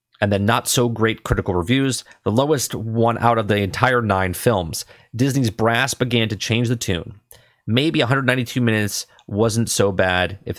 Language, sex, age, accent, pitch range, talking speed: English, male, 30-49, American, 105-125 Hz, 160 wpm